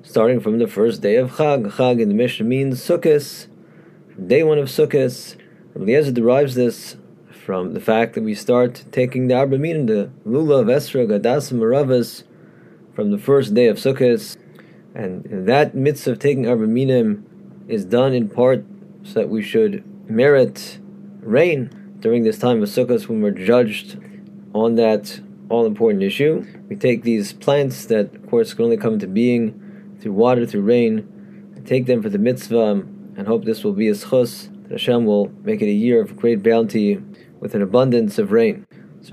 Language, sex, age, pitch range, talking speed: English, male, 20-39, 120-200 Hz, 175 wpm